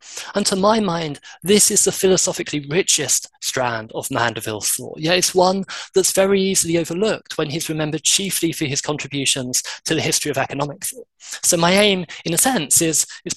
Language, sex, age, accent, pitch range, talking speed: English, male, 20-39, British, 145-185 Hz, 190 wpm